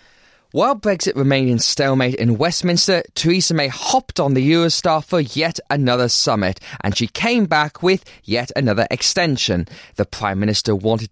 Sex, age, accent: male, 20-39, British